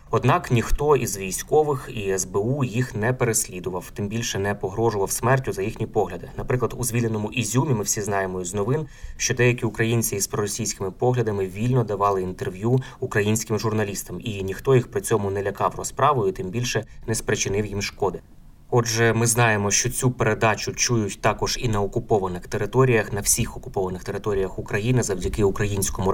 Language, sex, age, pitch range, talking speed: Ukrainian, male, 20-39, 100-125 Hz, 160 wpm